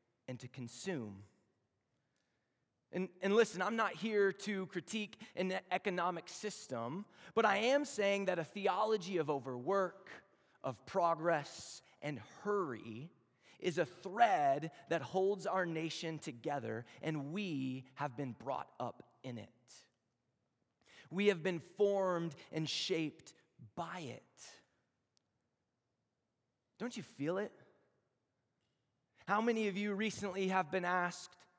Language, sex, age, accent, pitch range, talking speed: English, male, 30-49, American, 160-220 Hz, 120 wpm